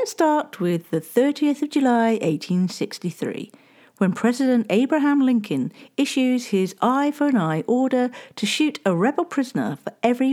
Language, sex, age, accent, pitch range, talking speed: English, female, 50-69, British, 180-260 Hz, 130 wpm